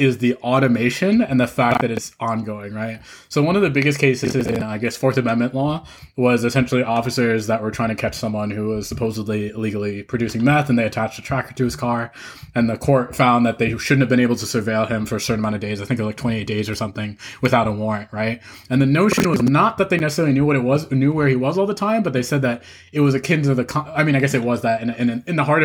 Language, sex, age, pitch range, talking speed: English, male, 20-39, 115-135 Hz, 280 wpm